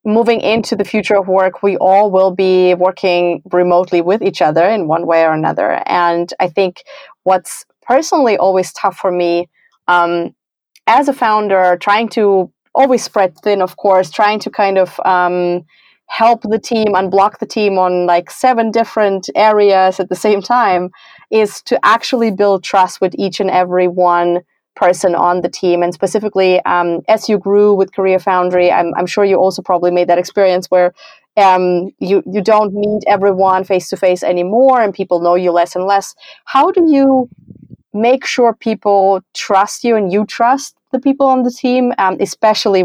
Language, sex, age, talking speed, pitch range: English, female, 30-49, 180 wpm, 180-215 Hz